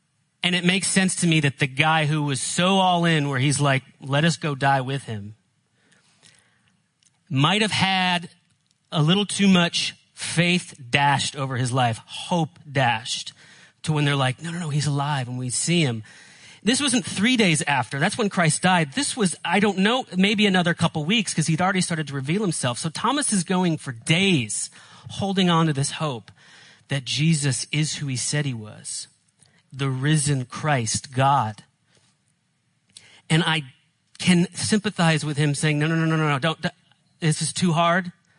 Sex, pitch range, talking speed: male, 140-175 Hz, 180 wpm